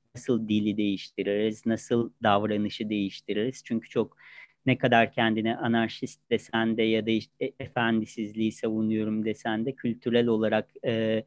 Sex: male